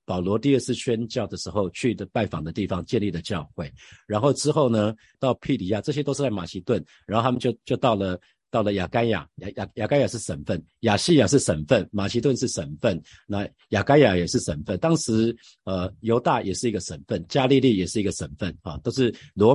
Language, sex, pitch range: Chinese, male, 95-125 Hz